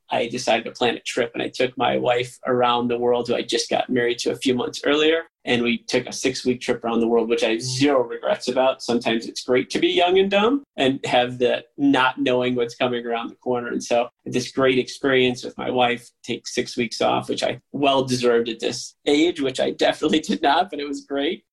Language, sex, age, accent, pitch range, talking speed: English, male, 30-49, American, 120-140 Hz, 240 wpm